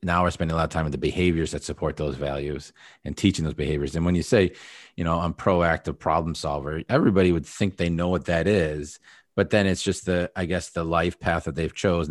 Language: English